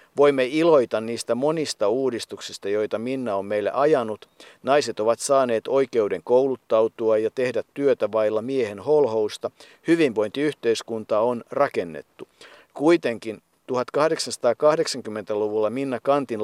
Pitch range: 115-145 Hz